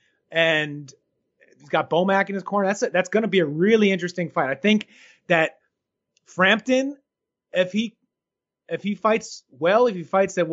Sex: male